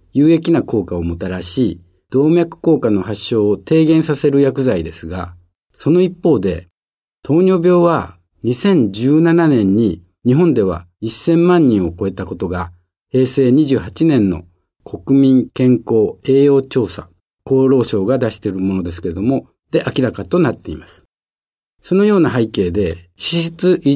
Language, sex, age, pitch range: Japanese, male, 50-69, 90-155 Hz